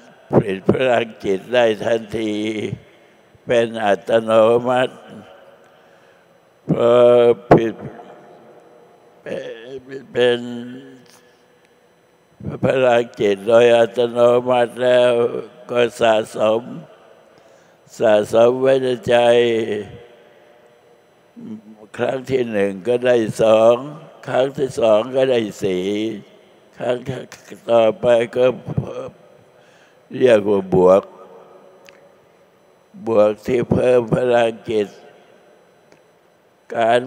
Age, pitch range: 60-79, 115-125 Hz